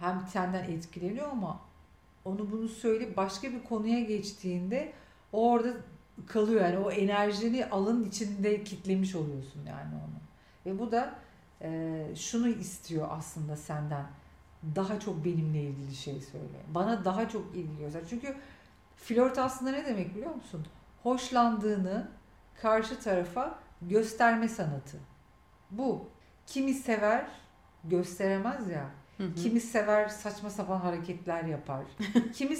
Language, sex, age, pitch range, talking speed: Turkish, female, 50-69, 160-220 Hz, 115 wpm